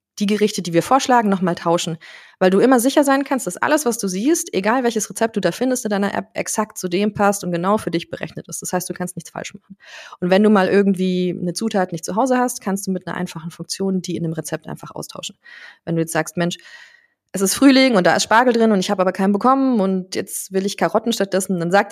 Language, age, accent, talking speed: German, 20-39, German, 255 wpm